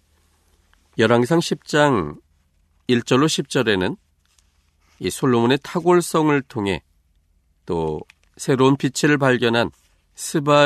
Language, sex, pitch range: Korean, male, 80-125 Hz